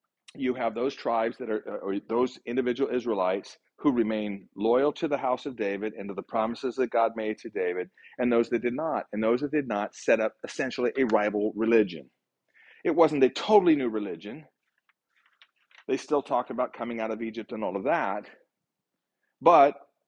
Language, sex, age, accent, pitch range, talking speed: English, male, 40-59, American, 110-145 Hz, 185 wpm